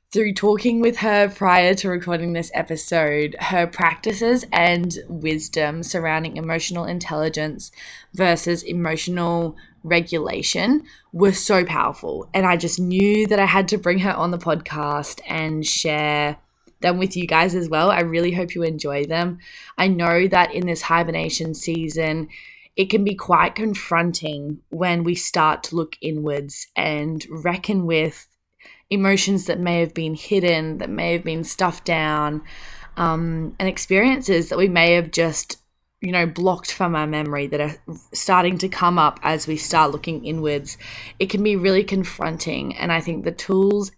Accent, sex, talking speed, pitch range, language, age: Australian, female, 160 wpm, 160-185 Hz, English, 20-39